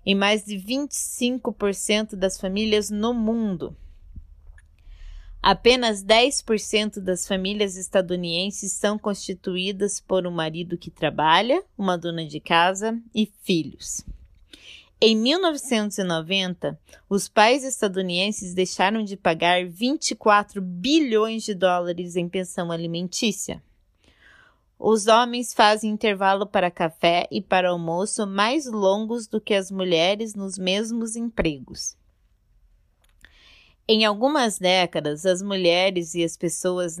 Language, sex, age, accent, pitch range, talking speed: Portuguese, female, 20-39, Brazilian, 170-215 Hz, 110 wpm